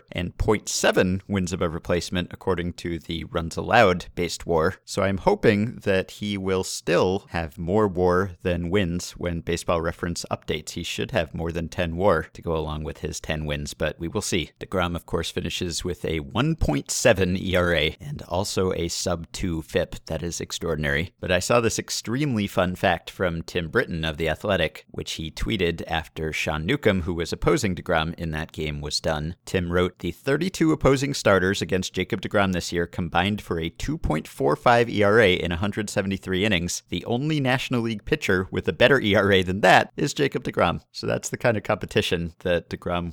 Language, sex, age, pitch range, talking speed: English, male, 50-69, 85-105 Hz, 185 wpm